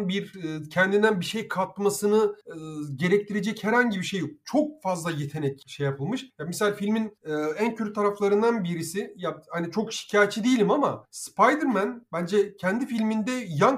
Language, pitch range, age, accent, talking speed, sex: Turkish, 165-225 Hz, 40-59, native, 150 wpm, male